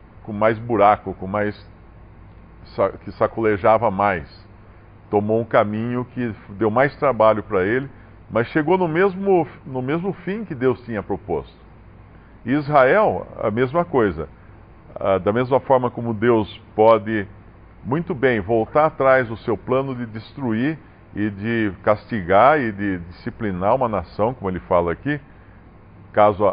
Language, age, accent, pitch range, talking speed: Portuguese, 50-69, Brazilian, 100-130 Hz, 135 wpm